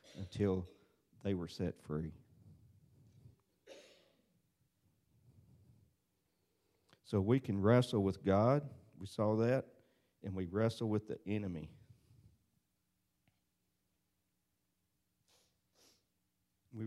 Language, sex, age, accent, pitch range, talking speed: English, male, 50-69, American, 95-115 Hz, 75 wpm